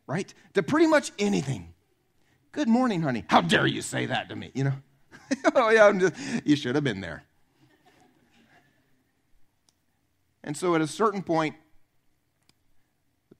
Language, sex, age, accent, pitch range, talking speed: English, male, 40-59, American, 125-160 Hz, 145 wpm